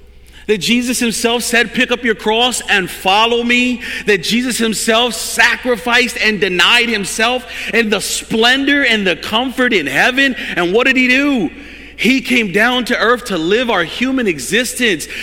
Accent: American